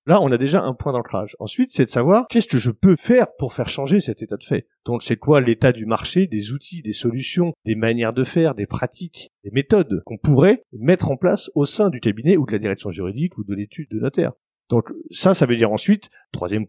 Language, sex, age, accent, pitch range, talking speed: French, male, 40-59, French, 115-170 Hz, 240 wpm